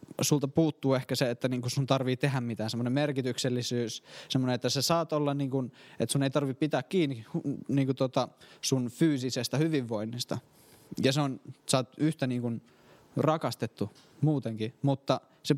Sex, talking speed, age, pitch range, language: male, 135 wpm, 20-39, 130-155 Hz, Finnish